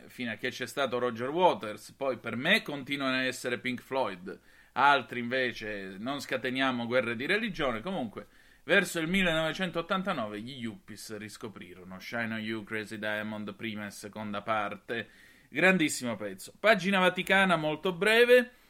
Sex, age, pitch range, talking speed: male, 30-49, 120-170 Hz, 140 wpm